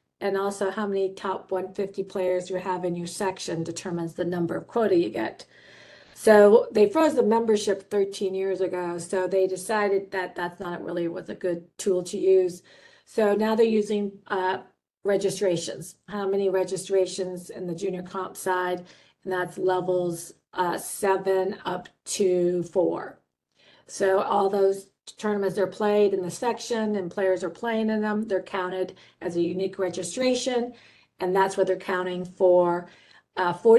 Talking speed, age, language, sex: 160 wpm, 40-59, English, female